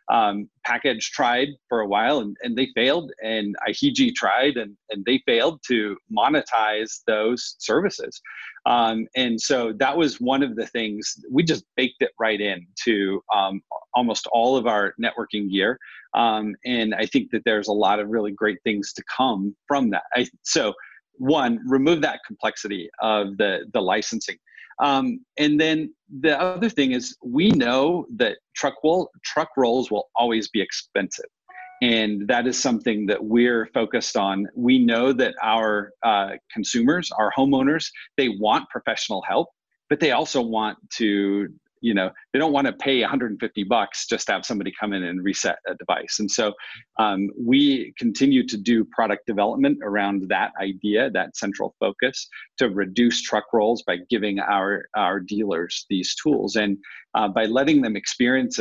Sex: male